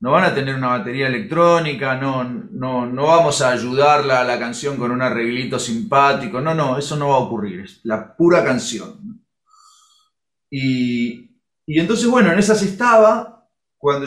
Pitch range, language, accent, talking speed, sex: 120-170 Hz, Spanish, Argentinian, 165 wpm, male